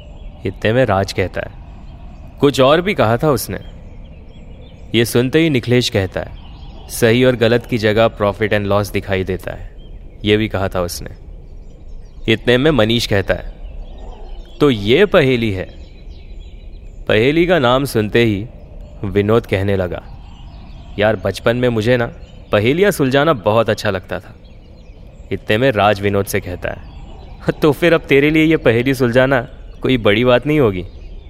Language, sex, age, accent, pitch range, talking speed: Hindi, male, 30-49, native, 85-125 Hz, 155 wpm